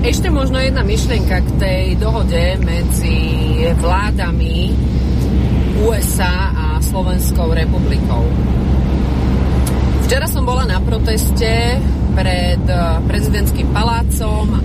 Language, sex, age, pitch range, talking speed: Slovak, female, 30-49, 65-70 Hz, 85 wpm